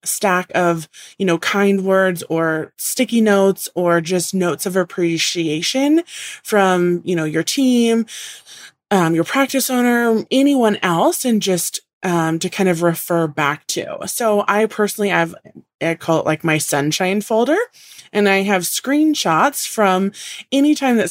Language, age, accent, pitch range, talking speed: English, 20-39, American, 170-225 Hz, 150 wpm